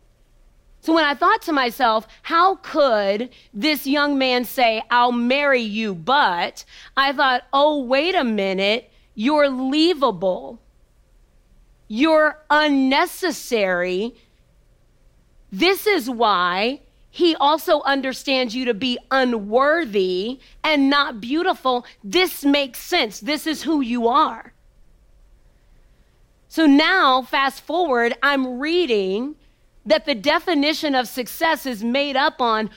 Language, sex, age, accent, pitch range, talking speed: English, female, 40-59, American, 220-300 Hz, 115 wpm